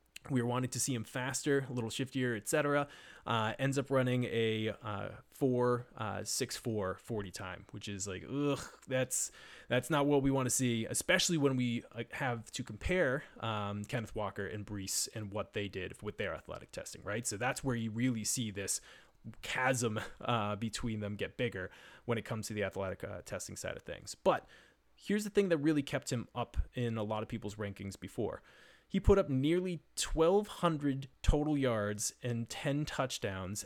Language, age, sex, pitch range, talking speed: English, 20-39, male, 110-140 Hz, 190 wpm